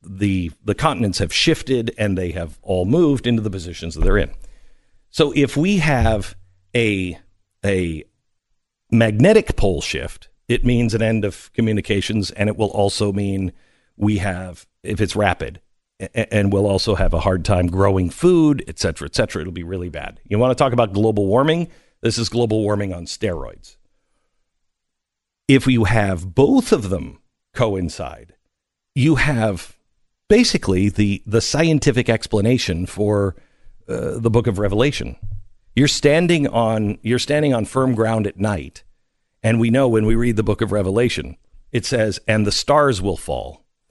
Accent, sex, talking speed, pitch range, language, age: American, male, 165 wpm, 95-130 Hz, English, 50-69